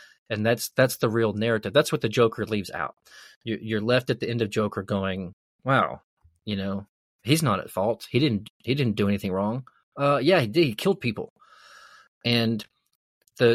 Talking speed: 190 wpm